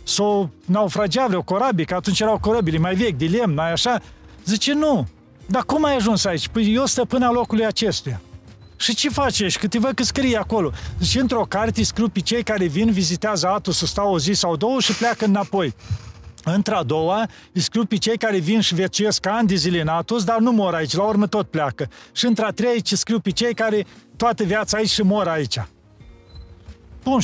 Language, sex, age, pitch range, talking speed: Romanian, male, 40-59, 185-230 Hz, 200 wpm